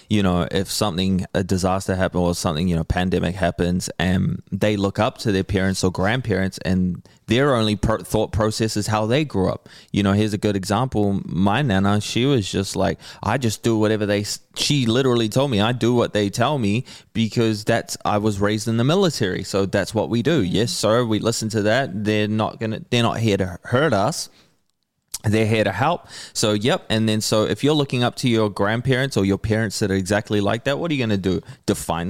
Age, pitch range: 20-39, 95-115 Hz